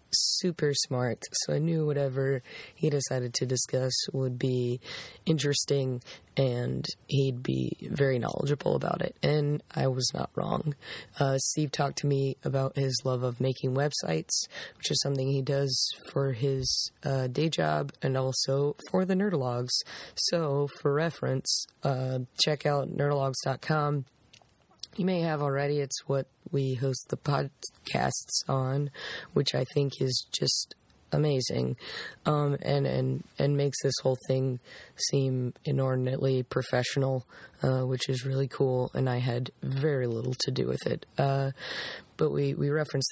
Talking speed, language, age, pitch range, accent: 145 wpm, English, 20-39, 130-145 Hz, American